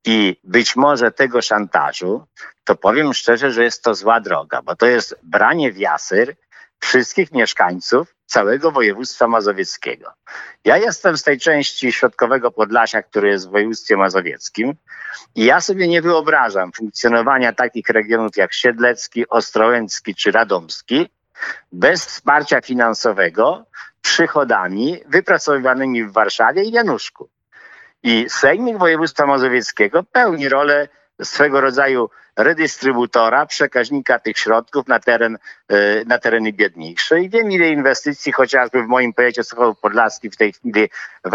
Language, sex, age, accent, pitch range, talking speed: Polish, male, 50-69, native, 110-140 Hz, 125 wpm